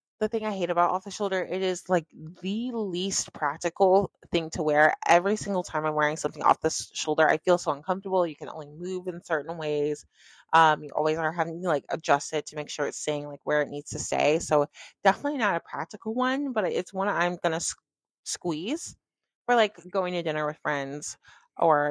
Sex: female